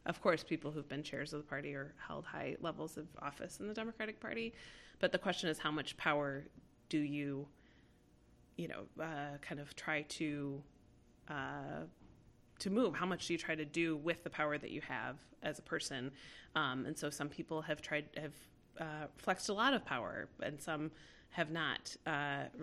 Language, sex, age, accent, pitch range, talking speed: English, female, 20-39, American, 140-160 Hz, 195 wpm